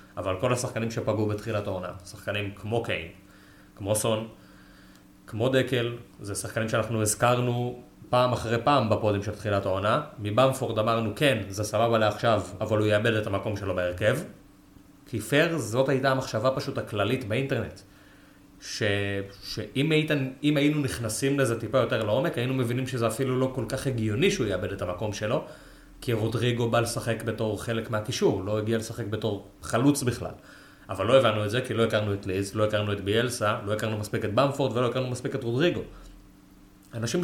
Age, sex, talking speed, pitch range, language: 30-49, male, 165 wpm, 105-125 Hz, Hebrew